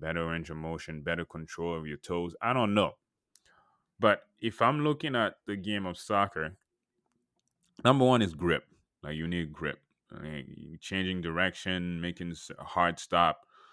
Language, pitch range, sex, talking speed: English, 80-95 Hz, male, 155 wpm